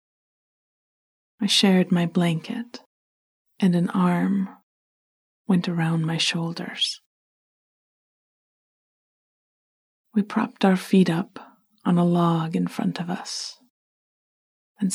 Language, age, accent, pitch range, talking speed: English, 30-49, American, 170-205 Hz, 95 wpm